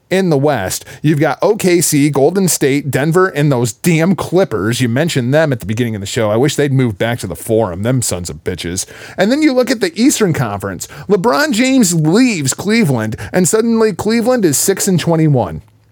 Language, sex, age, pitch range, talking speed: English, male, 30-49, 135-205 Hz, 200 wpm